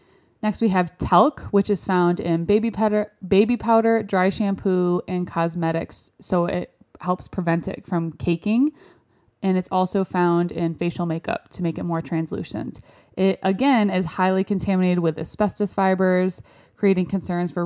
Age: 20-39